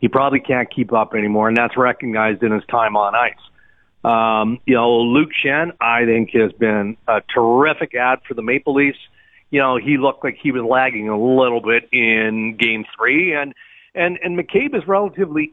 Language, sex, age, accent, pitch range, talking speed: English, male, 50-69, American, 120-150 Hz, 195 wpm